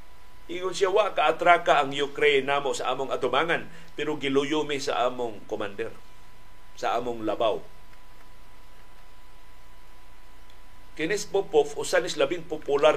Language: Filipino